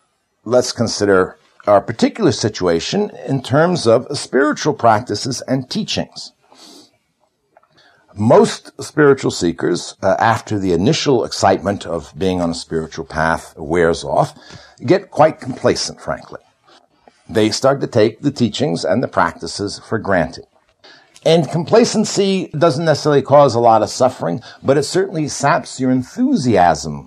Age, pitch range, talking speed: 60-79, 110-165 Hz, 130 wpm